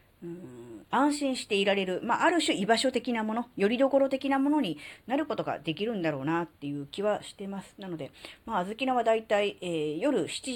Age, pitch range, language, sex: 40-59, 150-225 Hz, Japanese, female